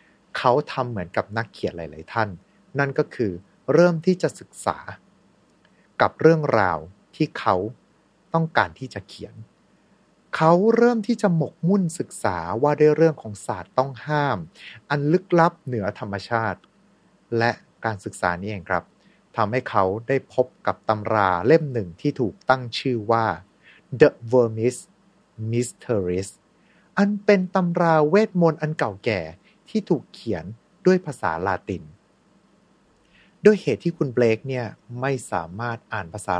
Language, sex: Thai, male